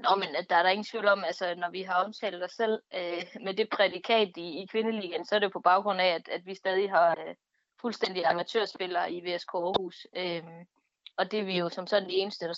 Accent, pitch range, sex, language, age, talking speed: native, 180-220 Hz, female, Danish, 20-39, 235 wpm